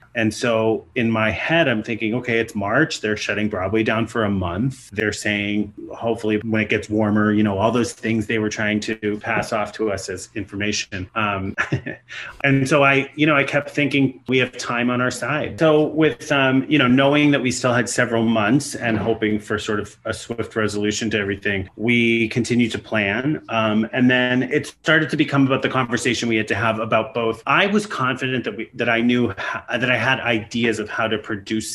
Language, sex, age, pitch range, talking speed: English, male, 30-49, 105-125 Hz, 210 wpm